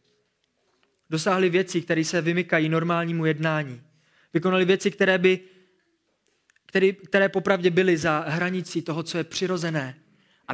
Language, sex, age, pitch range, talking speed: Czech, male, 20-39, 150-210 Hz, 125 wpm